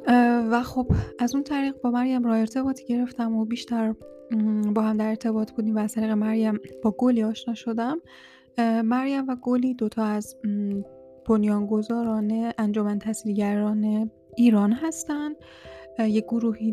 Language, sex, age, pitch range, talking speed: Persian, female, 10-29, 215-245 Hz, 130 wpm